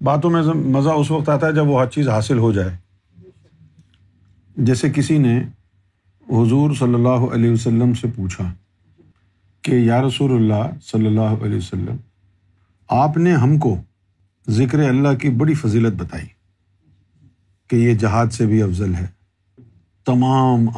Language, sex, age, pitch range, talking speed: Urdu, male, 50-69, 95-135 Hz, 145 wpm